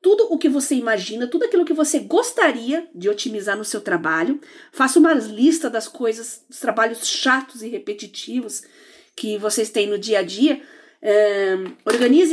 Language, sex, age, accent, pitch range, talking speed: Portuguese, female, 40-59, Brazilian, 225-325 Hz, 165 wpm